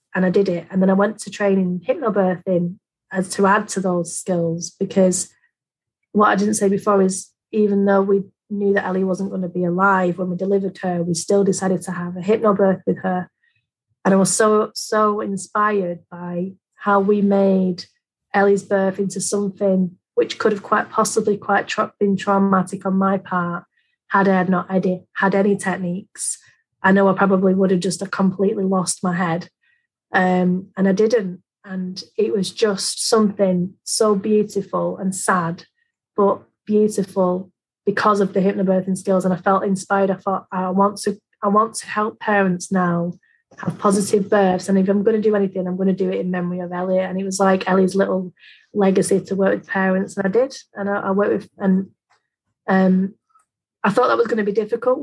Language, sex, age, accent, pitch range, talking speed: English, female, 30-49, British, 185-205 Hz, 195 wpm